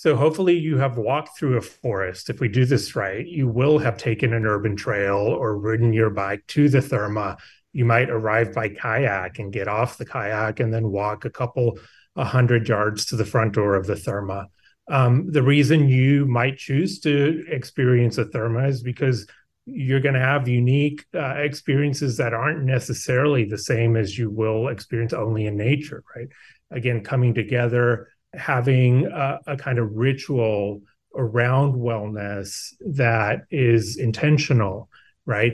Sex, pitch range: male, 110-135 Hz